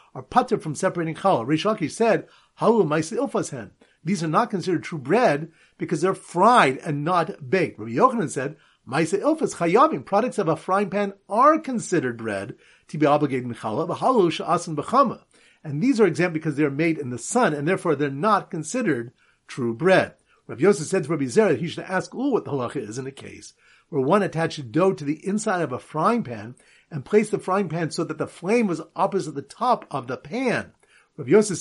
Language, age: English, 50-69